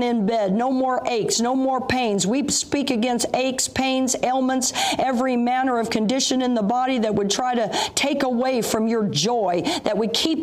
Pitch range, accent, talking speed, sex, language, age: 215-260 Hz, American, 190 wpm, female, English, 50-69